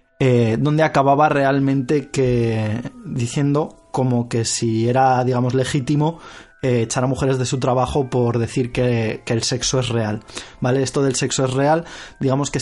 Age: 20-39